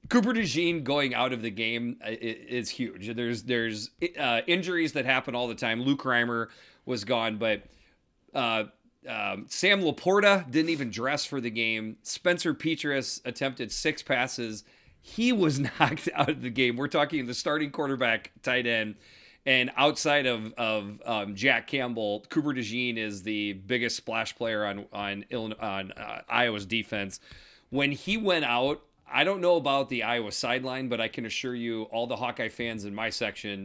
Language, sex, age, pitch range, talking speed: English, male, 30-49, 110-145 Hz, 170 wpm